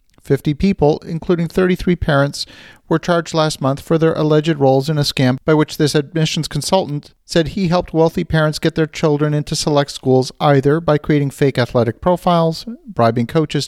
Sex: male